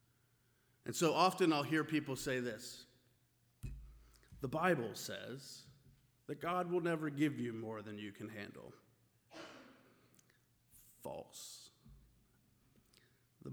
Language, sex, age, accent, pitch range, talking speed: English, male, 30-49, American, 125-165 Hz, 105 wpm